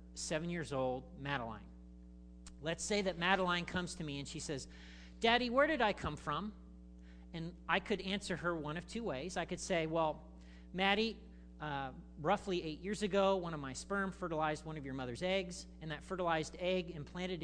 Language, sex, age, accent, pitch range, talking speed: English, male, 40-59, American, 135-195 Hz, 185 wpm